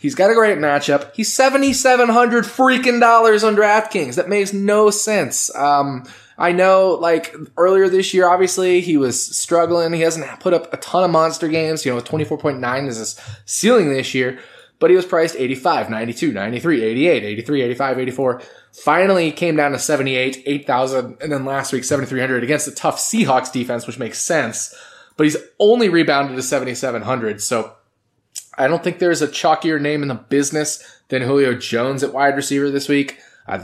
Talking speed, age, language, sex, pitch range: 180 wpm, 20-39, English, male, 120-165 Hz